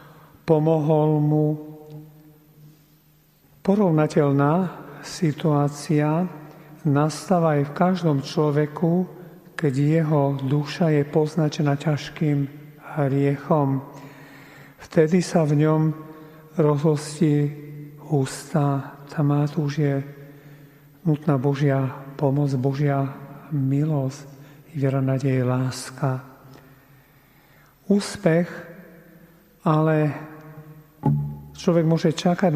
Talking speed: 70 wpm